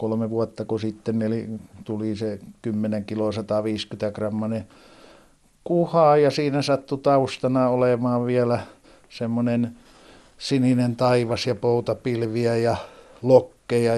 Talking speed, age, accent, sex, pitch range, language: 105 wpm, 60-79, native, male, 110-135 Hz, Finnish